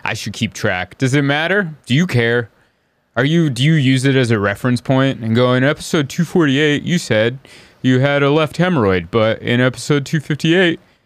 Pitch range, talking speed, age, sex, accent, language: 110-140 Hz, 215 wpm, 30-49, male, American, English